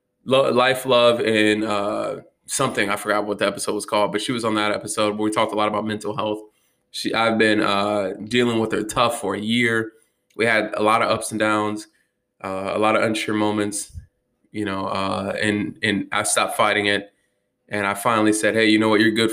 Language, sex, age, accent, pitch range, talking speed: English, male, 20-39, American, 105-125 Hz, 215 wpm